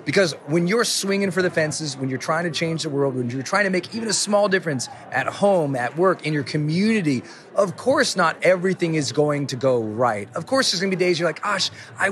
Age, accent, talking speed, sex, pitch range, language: 30-49, American, 245 wpm, male, 145-200 Hz, English